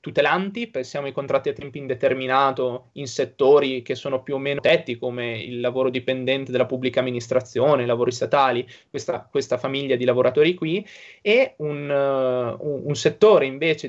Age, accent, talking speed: 20-39, native, 160 wpm